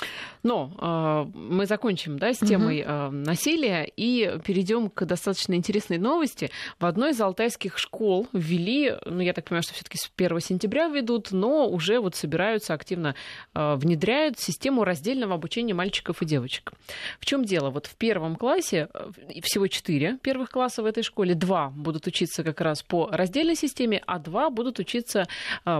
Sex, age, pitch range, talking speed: female, 30-49, 170-230 Hz, 165 wpm